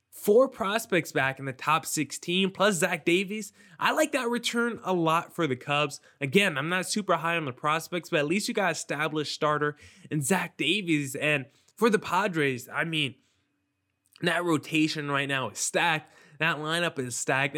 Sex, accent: male, American